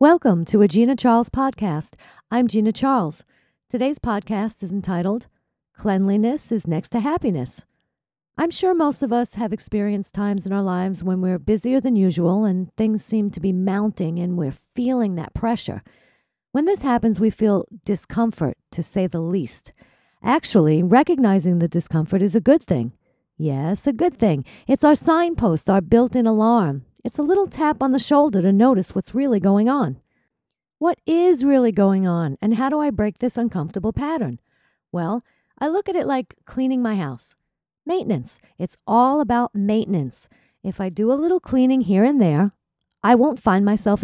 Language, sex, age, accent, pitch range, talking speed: English, female, 50-69, American, 185-255 Hz, 170 wpm